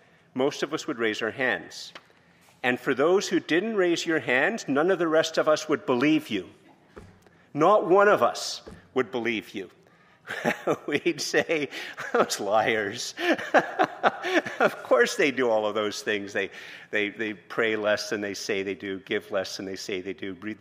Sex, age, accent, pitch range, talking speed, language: male, 50-69, American, 100-140 Hz, 175 wpm, English